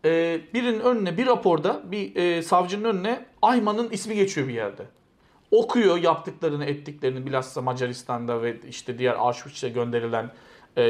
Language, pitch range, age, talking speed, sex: Turkish, 125-185 Hz, 40-59, 140 wpm, male